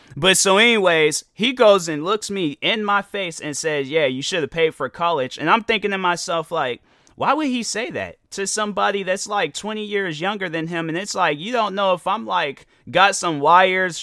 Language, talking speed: English, 225 wpm